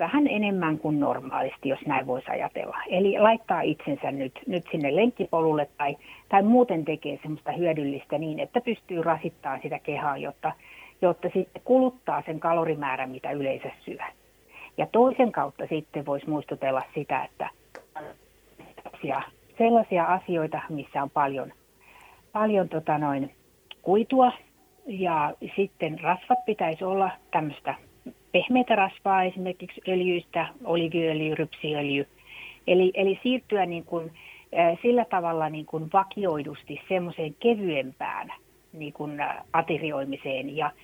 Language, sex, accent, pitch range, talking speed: Finnish, female, native, 150-195 Hz, 115 wpm